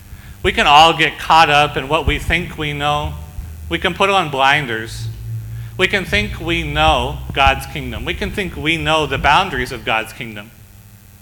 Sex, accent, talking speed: male, American, 180 wpm